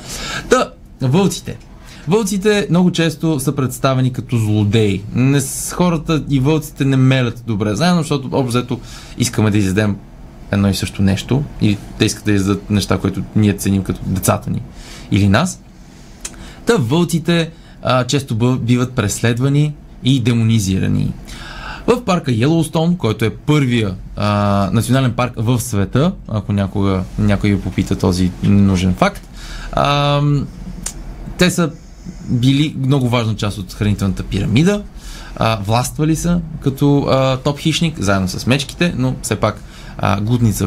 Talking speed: 140 wpm